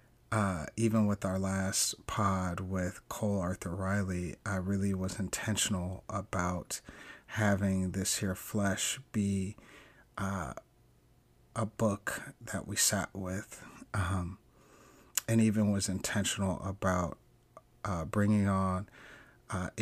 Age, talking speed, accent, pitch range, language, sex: 30-49, 110 wpm, American, 95-110 Hz, English, male